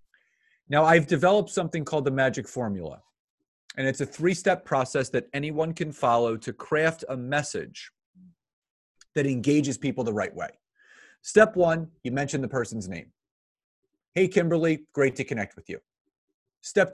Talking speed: 150 wpm